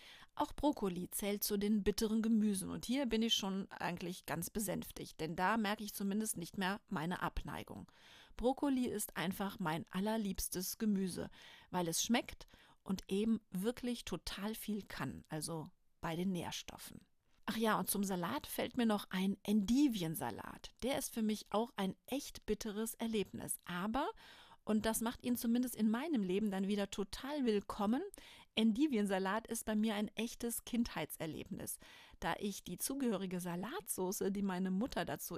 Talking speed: 155 wpm